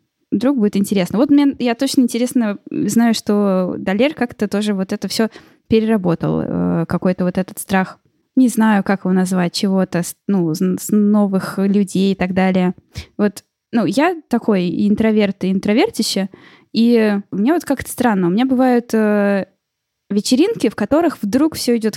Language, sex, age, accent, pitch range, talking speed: Russian, female, 10-29, native, 185-235 Hz, 150 wpm